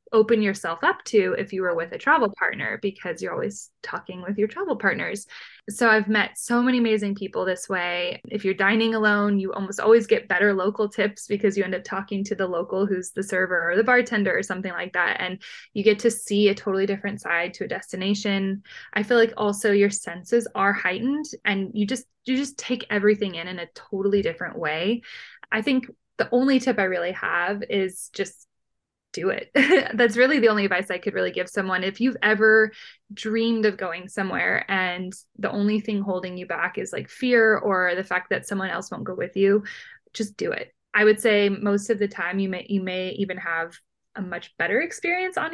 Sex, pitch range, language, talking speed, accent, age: female, 185-225 Hz, English, 210 wpm, American, 20-39